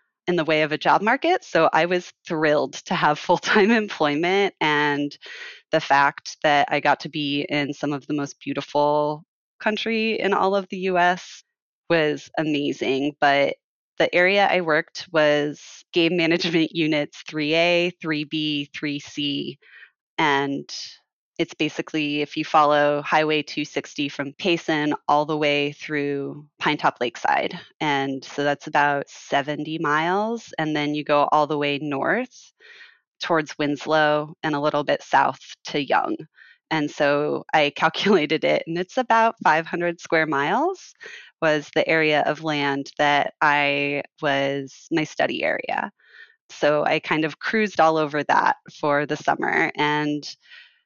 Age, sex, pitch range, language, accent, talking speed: 20-39, female, 145-170 Hz, English, American, 145 wpm